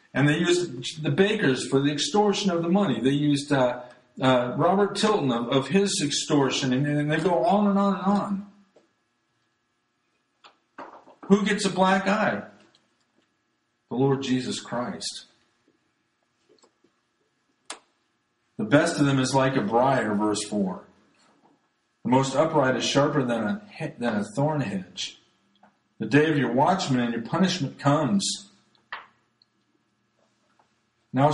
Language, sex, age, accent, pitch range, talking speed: English, male, 50-69, American, 130-170 Hz, 130 wpm